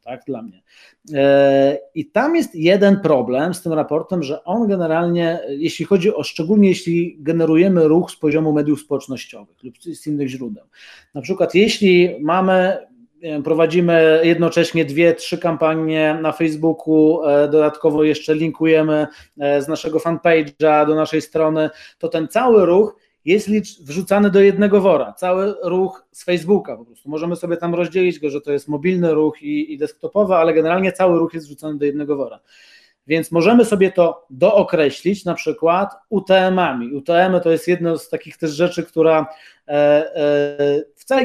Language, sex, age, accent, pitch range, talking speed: Polish, male, 30-49, native, 155-195 Hz, 155 wpm